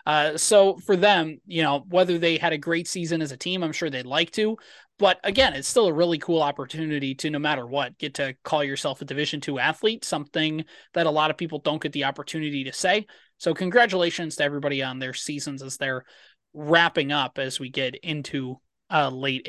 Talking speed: 210 wpm